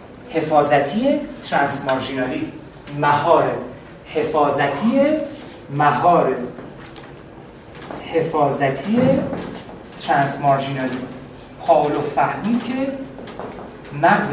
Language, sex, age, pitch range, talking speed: Persian, male, 30-49, 145-220 Hz, 60 wpm